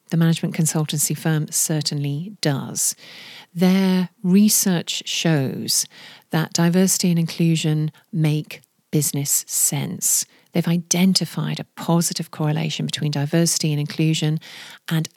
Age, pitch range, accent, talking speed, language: 40-59, 155-190 Hz, British, 105 wpm, English